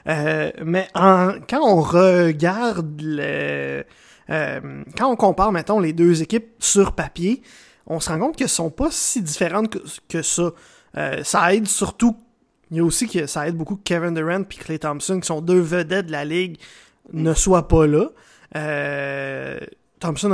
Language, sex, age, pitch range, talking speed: French, male, 20-39, 165-210 Hz, 175 wpm